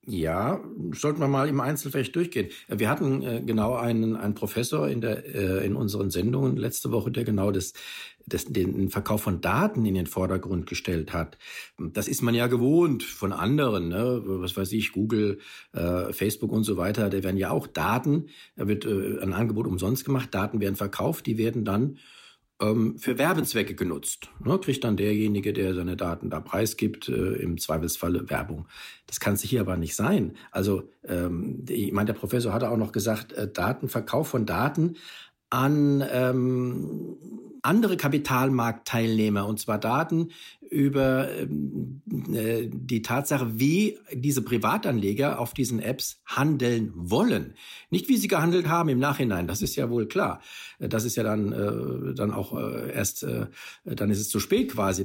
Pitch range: 100-130 Hz